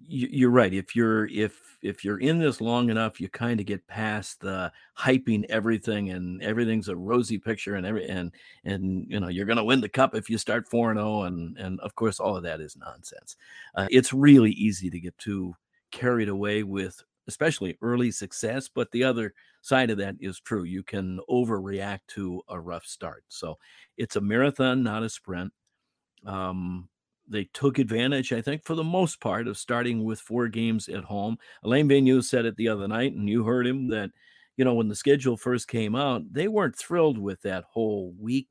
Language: English